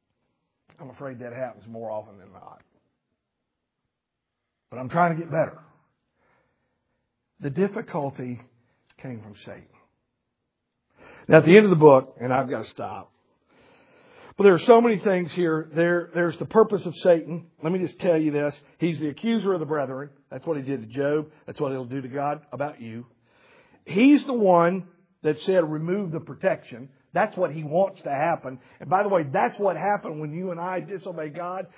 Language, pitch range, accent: English, 155-235 Hz, American